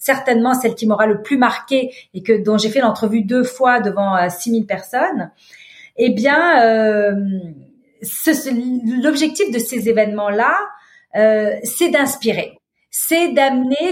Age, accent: 40-59, French